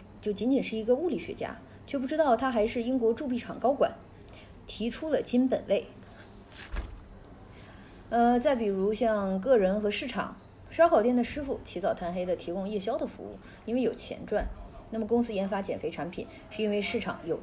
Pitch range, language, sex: 170-240 Hz, Chinese, female